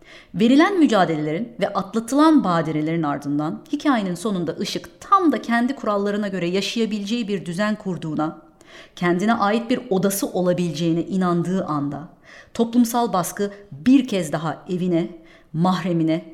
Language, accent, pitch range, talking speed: Turkish, native, 165-225 Hz, 120 wpm